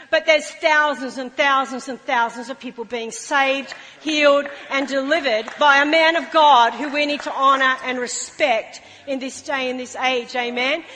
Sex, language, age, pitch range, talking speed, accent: female, English, 40-59, 260-315 Hz, 180 wpm, Australian